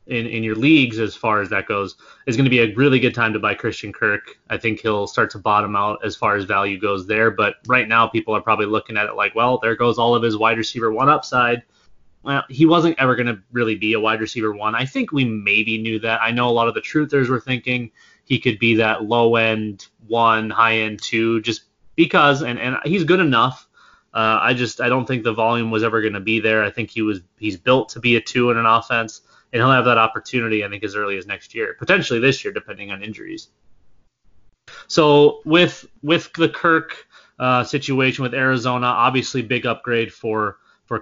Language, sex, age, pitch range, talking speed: English, male, 20-39, 110-130 Hz, 230 wpm